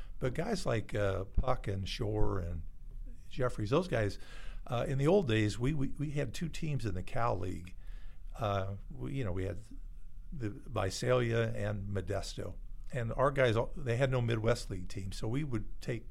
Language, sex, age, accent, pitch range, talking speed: English, male, 50-69, American, 100-125 Hz, 185 wpm